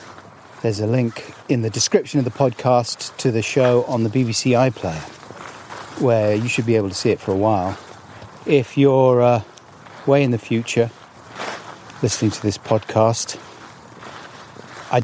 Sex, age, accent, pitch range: male, 30-49, British, 105-135 Hz